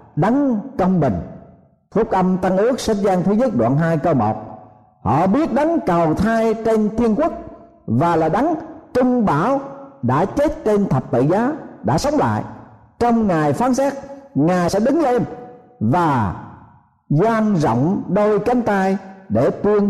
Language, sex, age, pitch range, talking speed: Vietnamese, male, 50-69, 150-245 Hz, 160 wpm